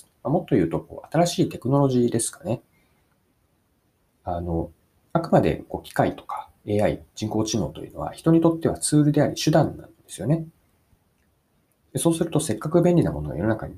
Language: Japanese